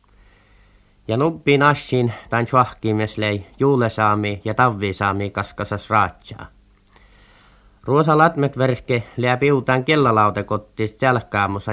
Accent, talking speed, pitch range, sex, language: native, 75 wpm, 100-125 Hz, male, Finnish